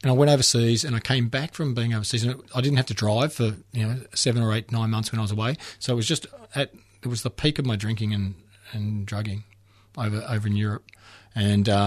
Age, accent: 40-59, Australian